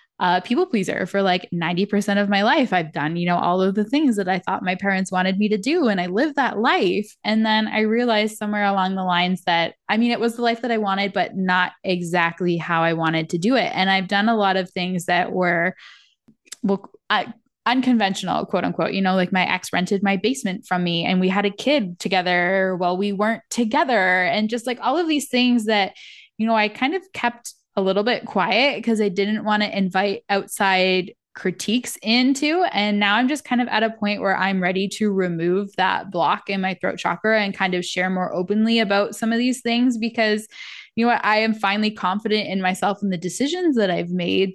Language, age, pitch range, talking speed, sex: English, 10-29, 185-225 Hz, 225 wpm, female